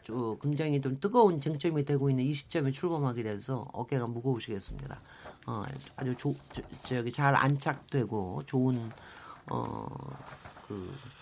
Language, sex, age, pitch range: Korean, male, 40-59, 135-215 Hz